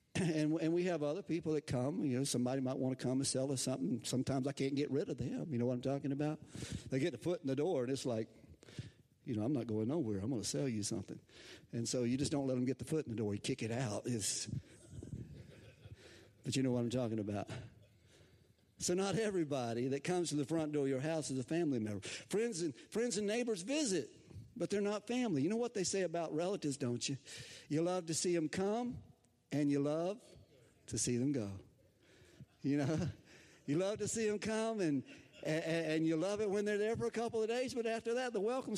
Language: English